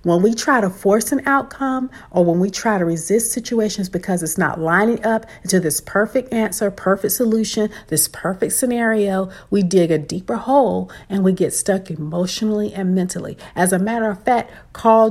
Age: 50-69